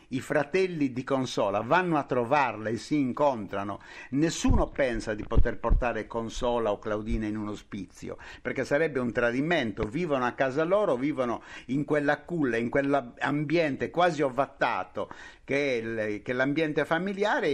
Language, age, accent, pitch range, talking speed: Italian, 50-69, native, 110-150 Hz, 145 wpm